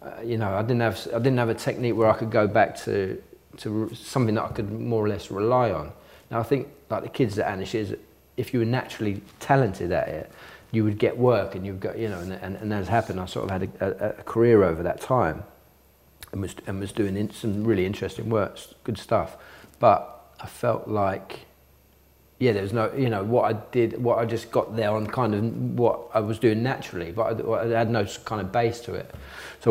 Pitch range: 95-115 Hz